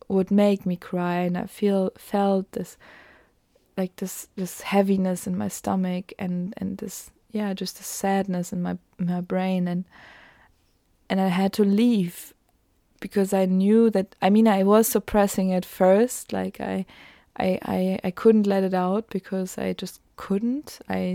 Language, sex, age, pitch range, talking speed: German, female, 20-39, 175-200 Hz, 165 wpm